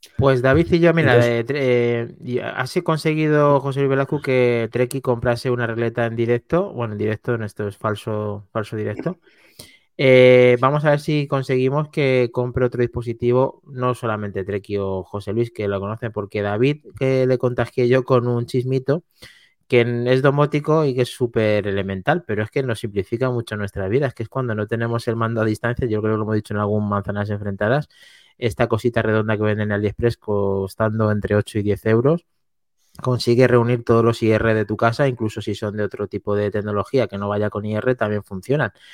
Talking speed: 195 wpm